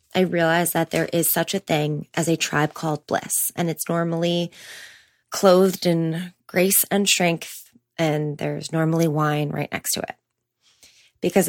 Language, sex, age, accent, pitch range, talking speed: English, female, 20-39, American, 150-185 Hz, 155 wpm